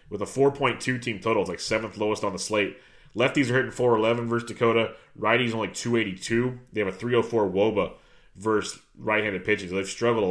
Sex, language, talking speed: male, English, 190 wpm